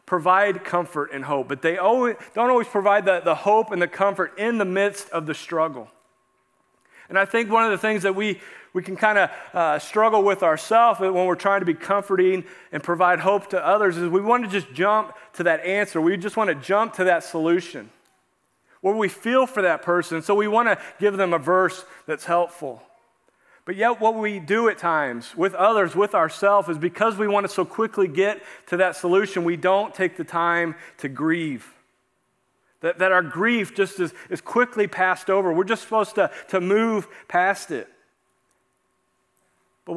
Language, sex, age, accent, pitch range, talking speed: English, male, 40-59, American, 175-205 Hz, 195 wpm